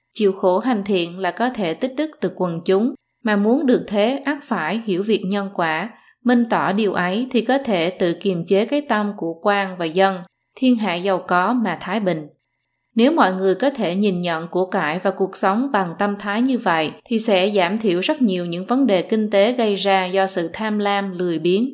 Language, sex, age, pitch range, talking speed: Vietnamese, female, 20-39, 180-230 Hz, 225 wpm